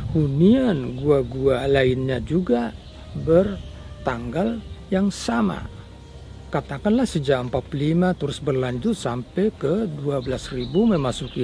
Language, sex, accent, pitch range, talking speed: Indonesian, male, native, 110-165 Hz, 90 wpm